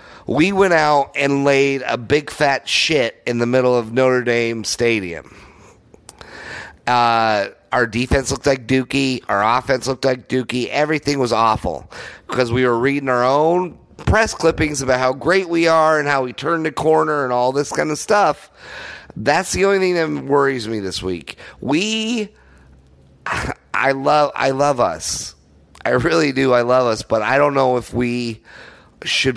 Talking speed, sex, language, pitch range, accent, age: 165 wpm, male, English, 115-145 Hz, American, 30-49